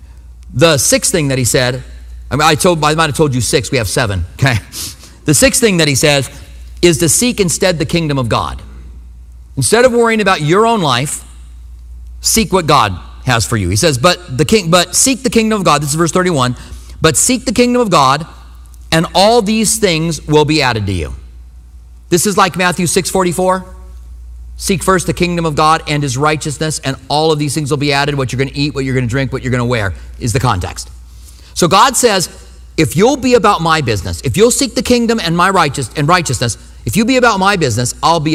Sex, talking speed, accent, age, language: male, 225 wpm, American, 40-59, English